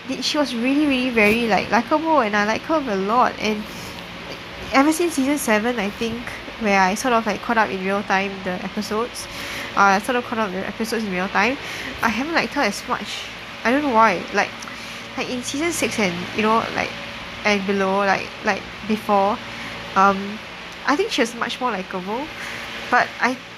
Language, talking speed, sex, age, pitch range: English, 195 wpm, female, 10-29, 195-240 Hz